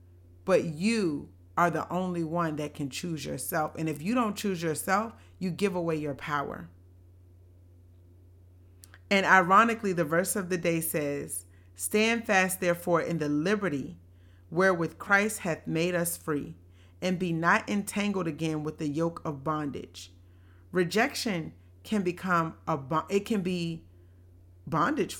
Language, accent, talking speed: English, American, 140 wpm